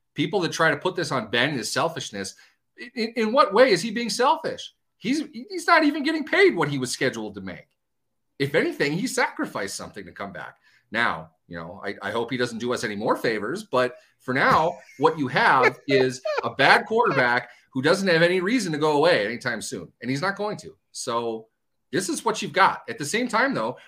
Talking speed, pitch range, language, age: 220 wpm, 115-180 Hz, English, 30-49